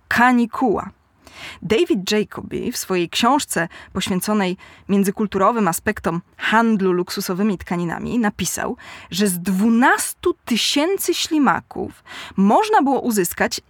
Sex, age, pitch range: female, 20-39, 200-275 Hz